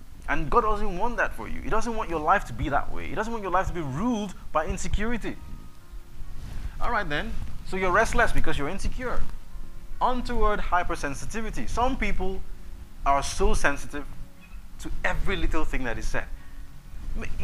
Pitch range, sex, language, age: 120-195 Hz, male, English, 30-49